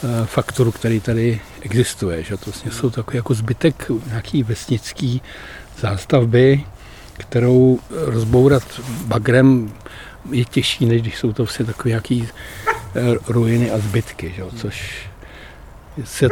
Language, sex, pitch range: Czech, male, 110-130 Hz